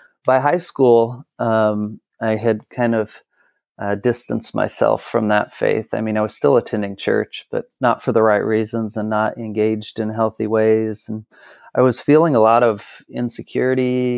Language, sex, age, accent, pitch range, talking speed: English, male, 30-49, American, 105-115 Hz, 175 wpm